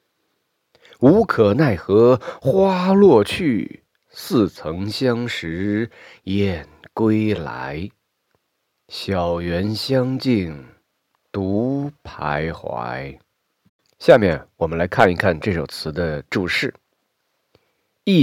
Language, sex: Chinese, male